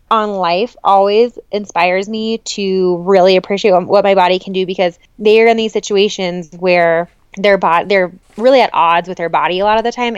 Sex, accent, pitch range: female, American, 180-215 Hz